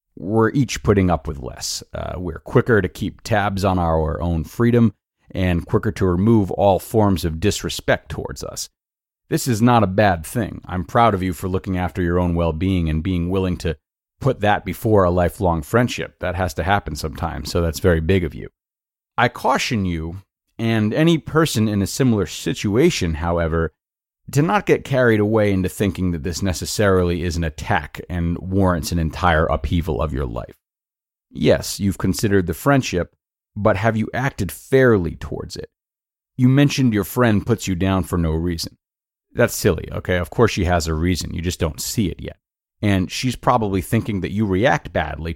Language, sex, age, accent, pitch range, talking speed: English, male, 30-49, American, 85-110 Hz, 185 wpm